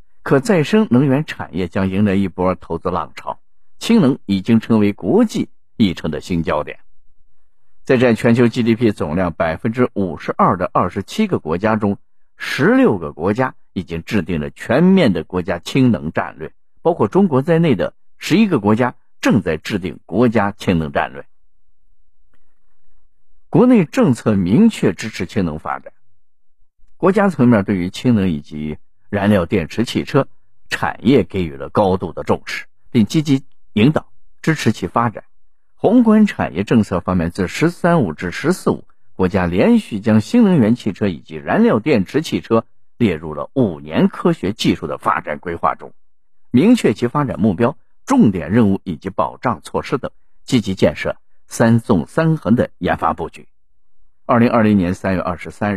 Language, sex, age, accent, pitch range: Chinese, male, 50-69, native, 90-130 Hz